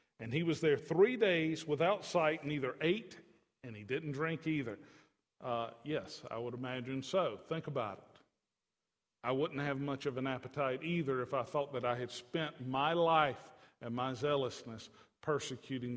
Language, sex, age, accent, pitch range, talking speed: English, male, 50-69, American, 120-150 Hz, 170 wpm